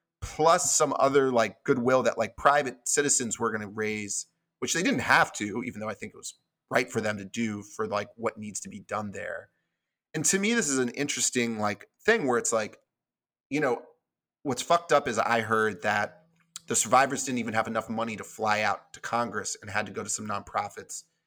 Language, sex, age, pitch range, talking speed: English, male, 30-49, 110-145 Hz, 215 wpm